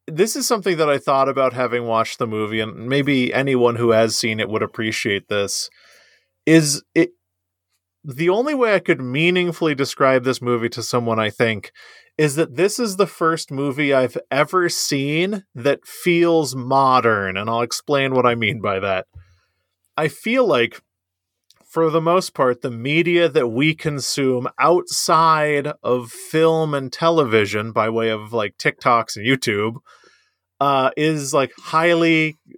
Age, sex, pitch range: 30-49, male, 120-160 Hz